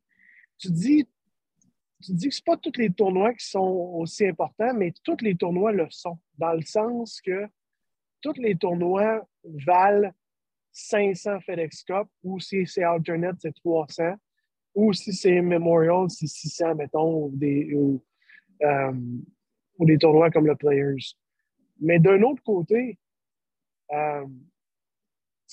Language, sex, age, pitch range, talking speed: French, male, 30-49, 160-205 Hz, 140 wpm